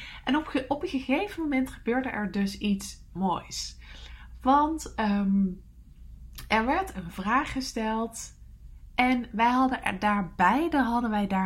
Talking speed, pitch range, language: 115 wpm, 190-250 Hz, English